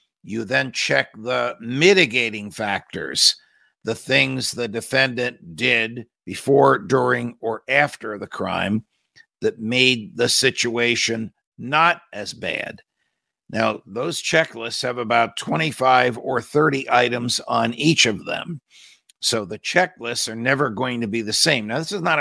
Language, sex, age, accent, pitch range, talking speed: English, male, 60-79, American, 115-130 Hz, 140 wpm